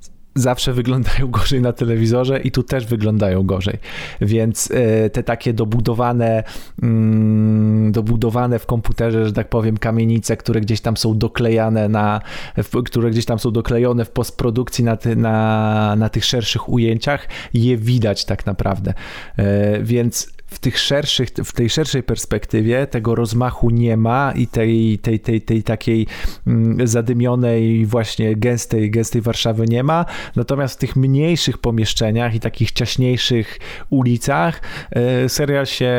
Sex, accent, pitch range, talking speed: male, native, 115-130 Hz, 130 wpm